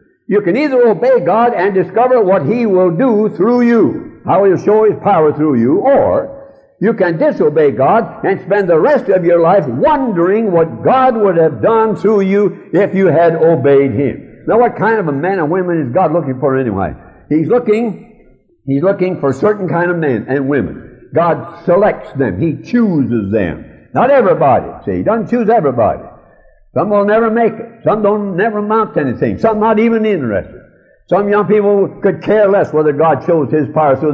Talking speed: 195 wpm